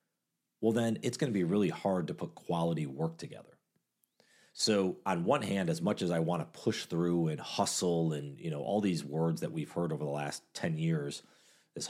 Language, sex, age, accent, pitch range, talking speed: English, male, 40-59, American, 80-110 Hz, 210 wpm